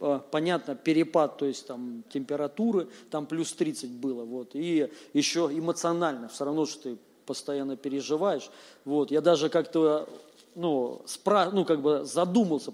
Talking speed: 140 wpm